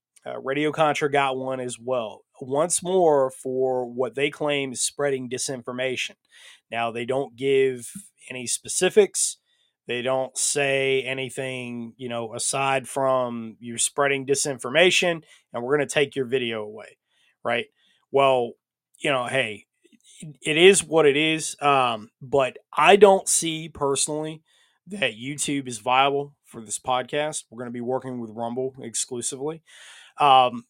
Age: 20-39